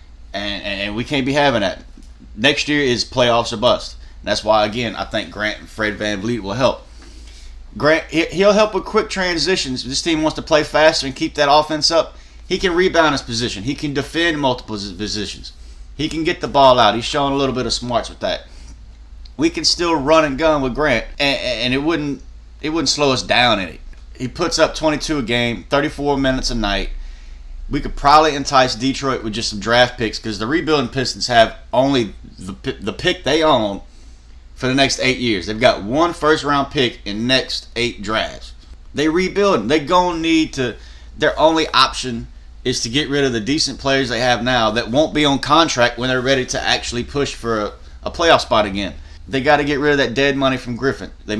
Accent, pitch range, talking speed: American, 105-150 Hz, 210 wpm